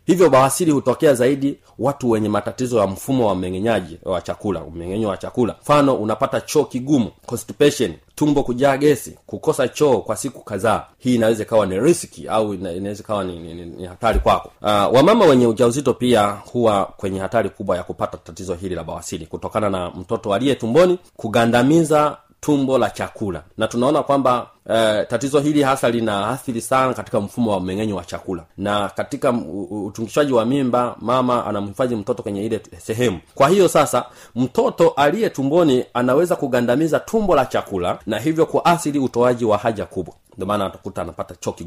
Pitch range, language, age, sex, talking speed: 100-130 Hz, Swahili, 30-49, male, 165 wpm